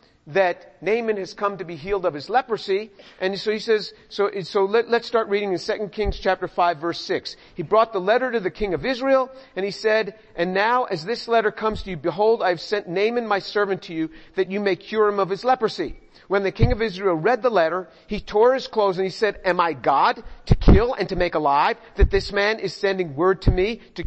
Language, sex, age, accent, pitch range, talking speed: English, male, 50-69, American, 180-220 Hz, 240 wpm